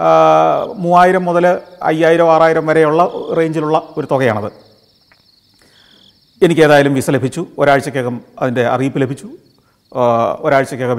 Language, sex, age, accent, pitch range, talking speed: Malayalam, male, 40-59, native, 120-160 Hz, 85 wpm